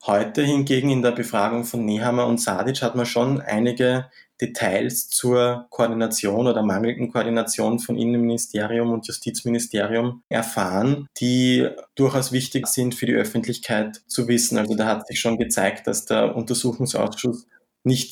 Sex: male